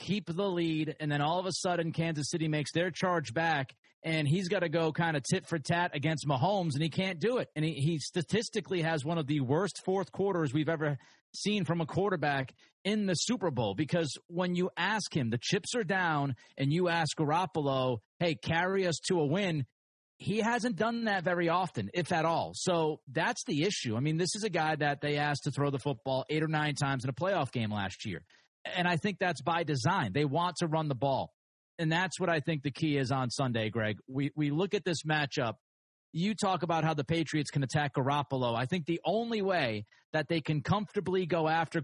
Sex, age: male, 30-49